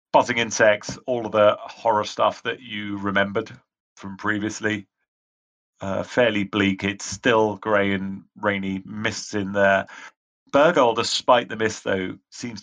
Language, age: English, 40-59